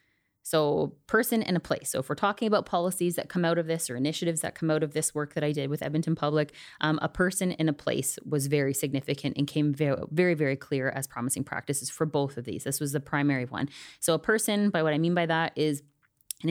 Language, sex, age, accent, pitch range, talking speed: English, female, 20-39, American, 140-170 Hz, 245 wpm